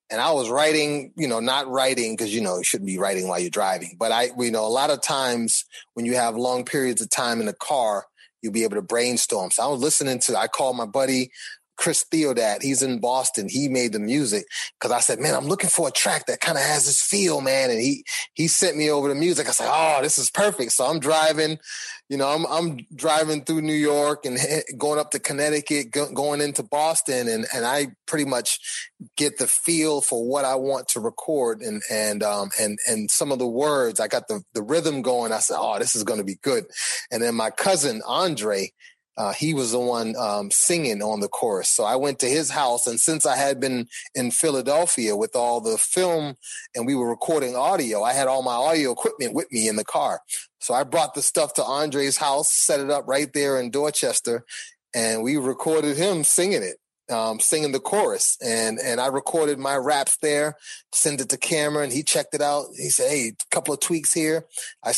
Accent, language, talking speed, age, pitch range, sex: American, English, 225 wpm, 30-49, 120-155 Hz, male